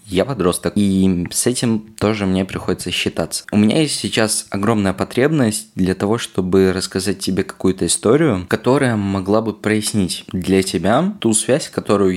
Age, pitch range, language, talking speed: 20-39, 90-105 Hz, Russian, 155 wpm